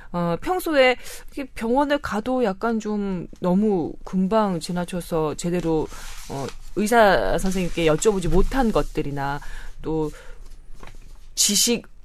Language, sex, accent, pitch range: Korean, female, native, 160-240 Hz